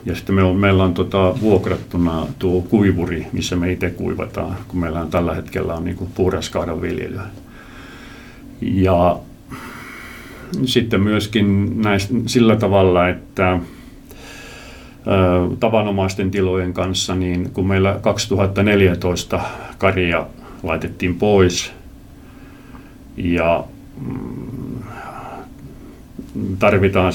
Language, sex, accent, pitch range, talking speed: Finnish, male, native, 90-100 Hz, 95 wpm